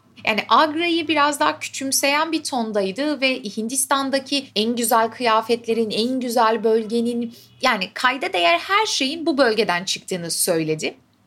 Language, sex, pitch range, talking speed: Turkish, female, 200-255 Hz, 130 wpm